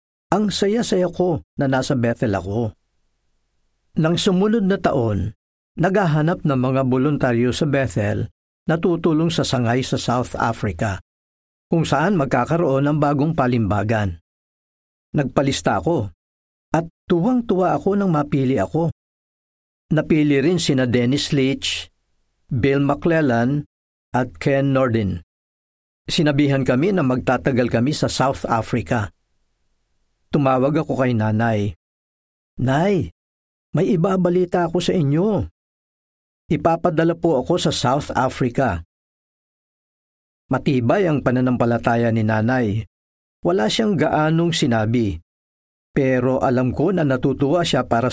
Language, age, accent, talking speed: Filipino, 50-69, native, 110 wpm